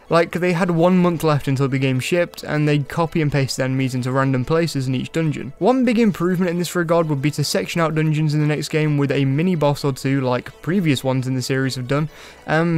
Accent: British